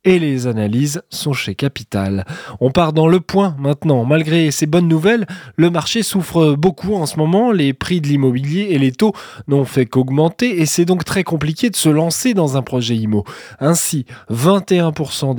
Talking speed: 185 wpm